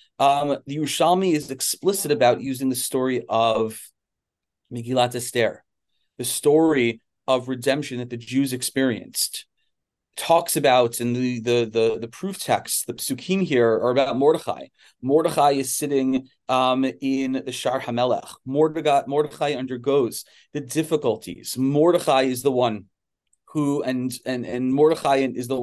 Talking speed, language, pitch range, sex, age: 135 wpm, English, 120-145 Hz, male, 30-49